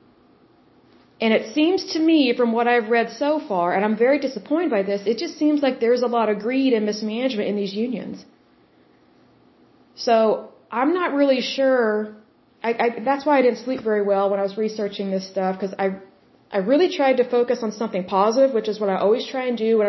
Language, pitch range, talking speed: Bengali, 220-265 Hz, 210 wpm